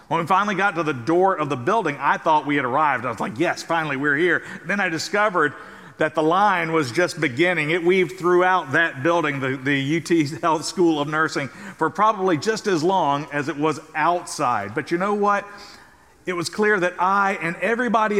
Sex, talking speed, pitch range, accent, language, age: male, 210 wpm, 165-195 Hz, American, English, 50-69